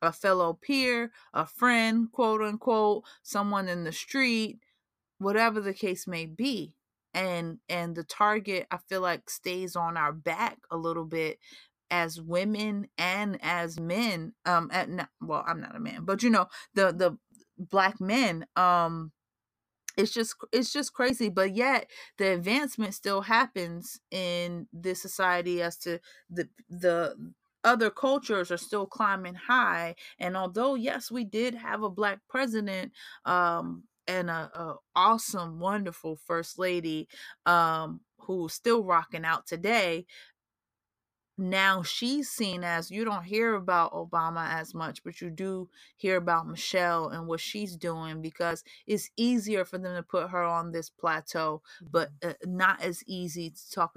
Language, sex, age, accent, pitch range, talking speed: English, female, 30-49, American, 165-215 Hz, 150 wpm